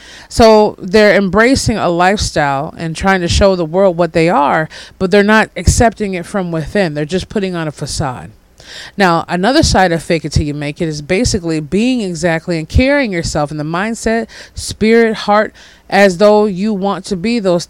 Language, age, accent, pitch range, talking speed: English, 20-39, American, 160-205 Hz, 190 wpm